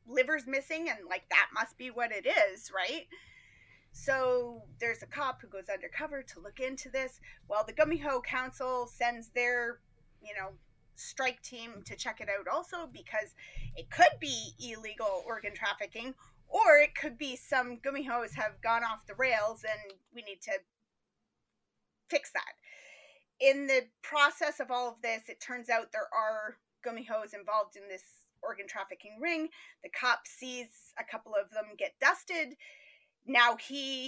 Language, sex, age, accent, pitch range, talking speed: English, female, 30-49, American, 225-290 Hz, 165 wpm